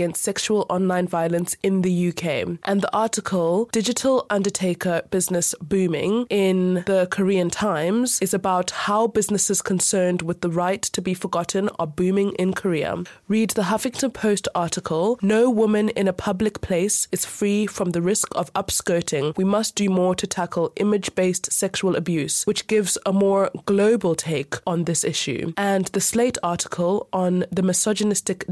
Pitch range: 175-205 Hz